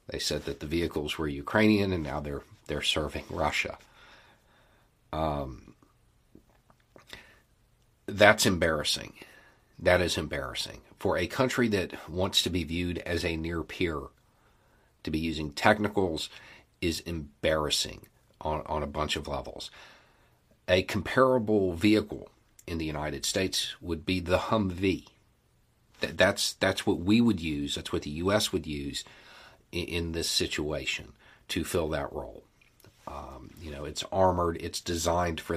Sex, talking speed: male, 140 wpm